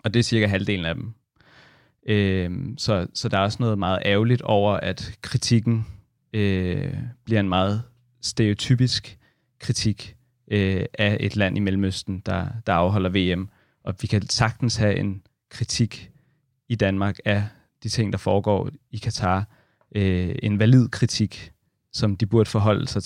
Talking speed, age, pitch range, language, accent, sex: 145 wpm, 30-49, 95-115 Hz, Danish, native, male